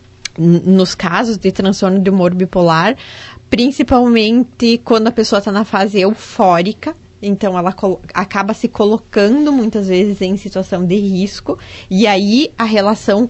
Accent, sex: Brazilian, female